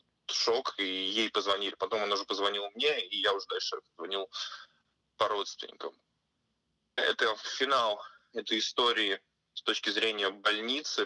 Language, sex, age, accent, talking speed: Russian, male, 20-39, native, 130 wpm